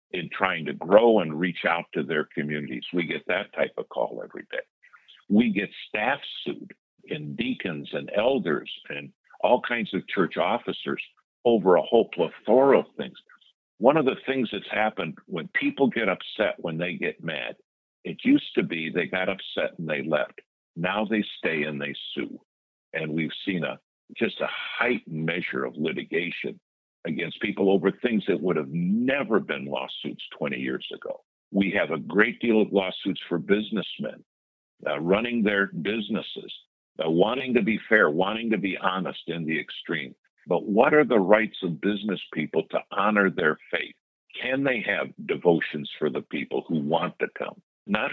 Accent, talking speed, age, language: American, 175 wpm, 60-79, English